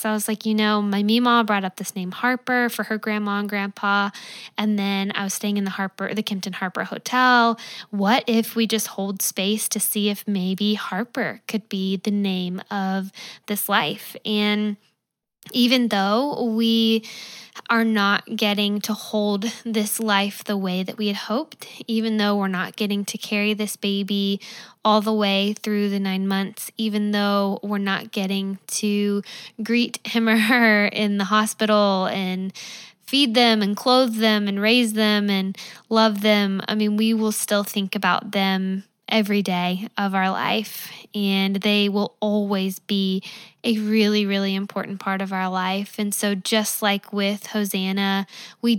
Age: 10-29